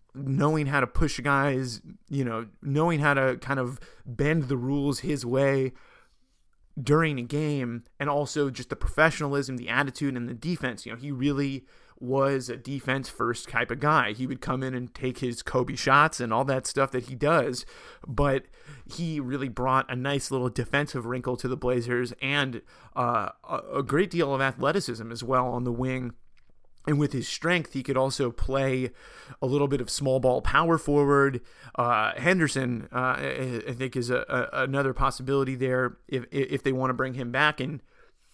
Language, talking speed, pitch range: English, 180 wpm, 125-140 Hz